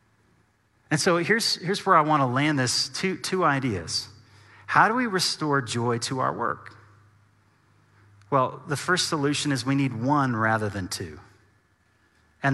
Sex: male